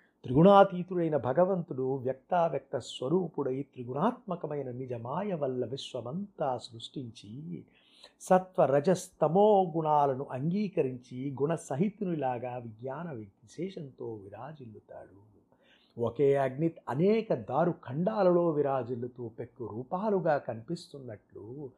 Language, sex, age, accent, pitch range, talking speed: Telugu, male, 50-69, native, 120-170 Hz, 75 wpm